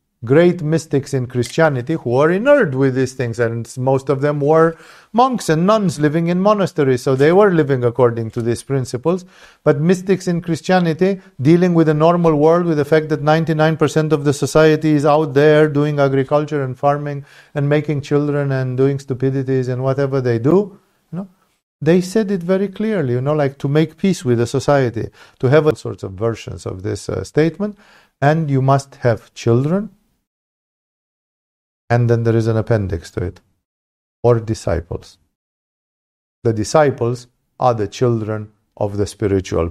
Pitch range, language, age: 115-155 Hz, English, 50-69